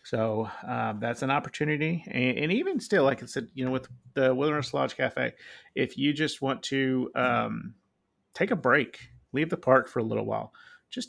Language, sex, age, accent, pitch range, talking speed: English, male, 40-59, American, 110-145 Hz, 195 wpm